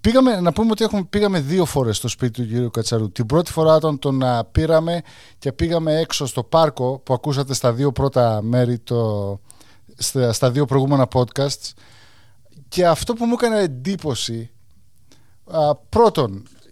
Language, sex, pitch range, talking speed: Greek, male, 120-160 Hz, 150 wpm